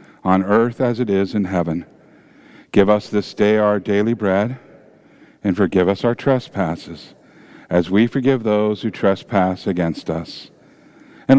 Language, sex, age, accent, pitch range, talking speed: English, male, 50-69, American, 95-115 Hz, 150 wpm